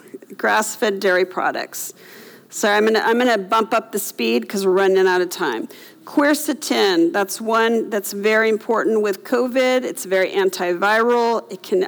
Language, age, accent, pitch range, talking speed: English, 50-69, American, 195-245 Hz, 165 wpm